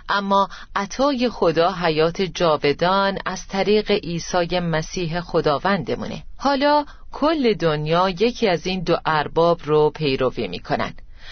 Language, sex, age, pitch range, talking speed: Persian, female, 40-59, 160-225 Hz, 110 wpm